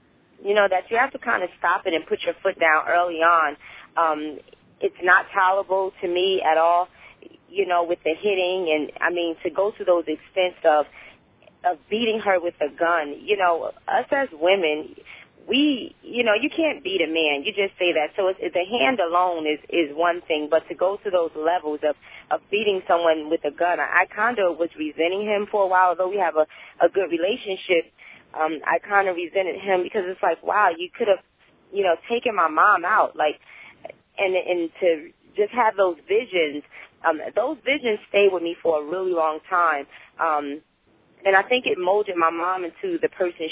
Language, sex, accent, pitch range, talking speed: English, female, American, 165-200 Hz, 205 wpm